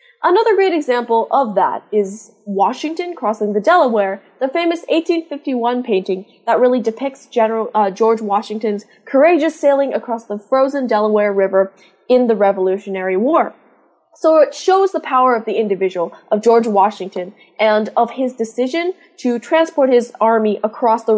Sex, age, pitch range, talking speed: female, 10-29, 205-275 Hz, 150 wpm